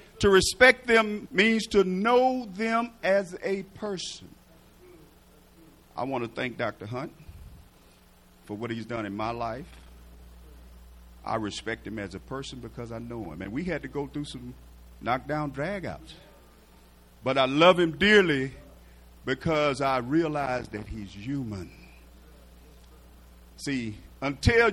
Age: 50-69